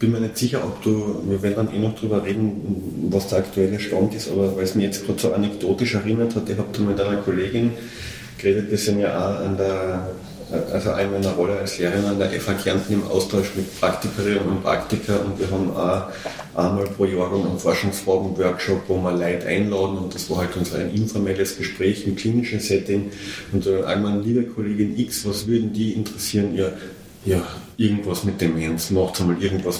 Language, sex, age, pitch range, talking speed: German, male, 30-49, 95-105 Hz, 200 wpm